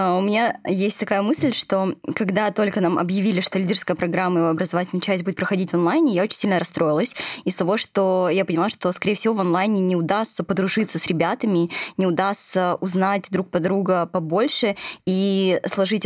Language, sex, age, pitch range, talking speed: Russian, female, 20-39, 180-205 Hz, 180 wpm